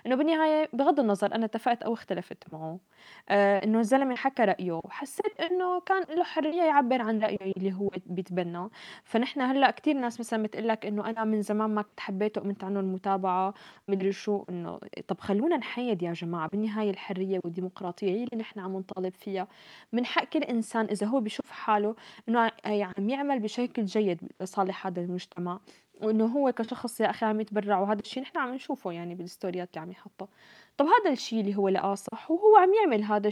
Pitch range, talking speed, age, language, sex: 195-250 Hz, 185 wpm, 20-39, Arabic, female